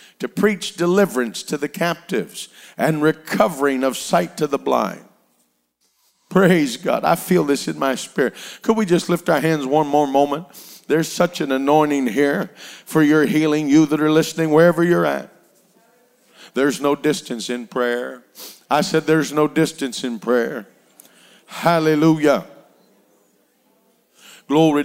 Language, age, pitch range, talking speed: English, 50-69, 140-160 Hz, 140 wpm